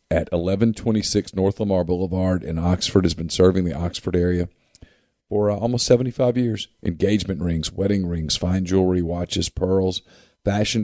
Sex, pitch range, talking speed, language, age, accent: male, 90-105 Hz, 155 wpm, English, 40-59, American